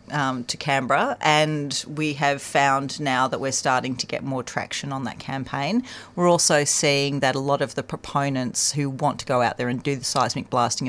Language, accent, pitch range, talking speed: English, Australian, 125-150 Hz, 210 wpm